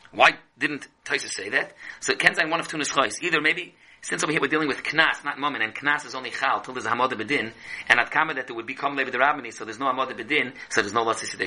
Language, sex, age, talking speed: English, male, 30-49, 265 wpm